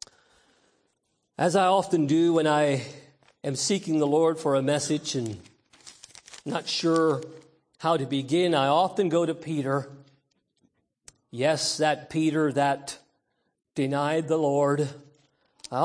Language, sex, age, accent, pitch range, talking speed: English, male, 50-69, American, 150-195 Hz, 120 wpm